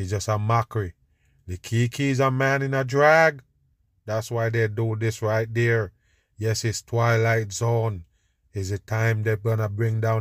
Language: English